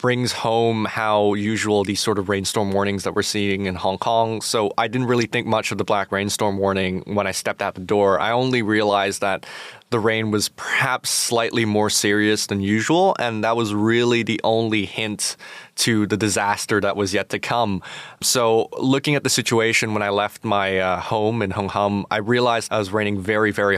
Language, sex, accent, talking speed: English, male, American, 205 wpm